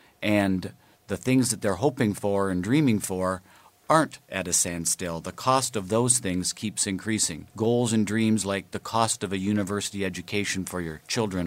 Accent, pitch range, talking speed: American, 95-120 Hz, 180 wpm